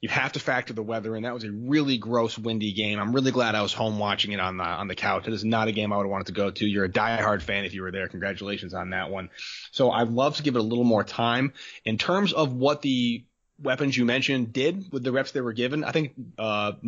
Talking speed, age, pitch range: 280 wpm, 20-39, 110-130 Hz